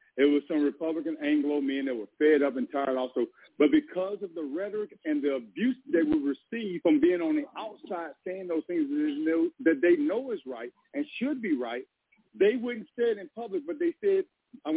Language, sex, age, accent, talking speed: English, male, 50-69, American, 205 wpm